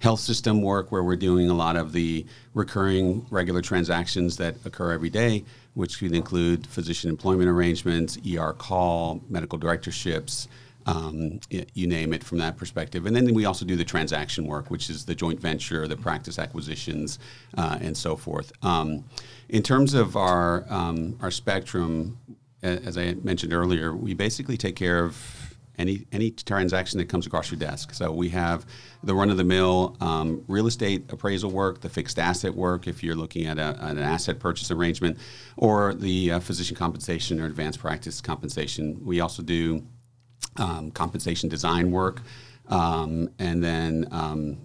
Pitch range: 80-100 Hz